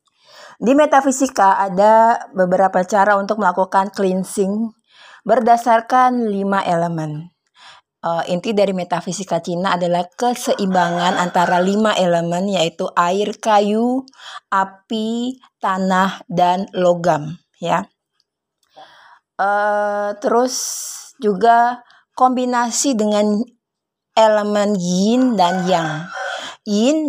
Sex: female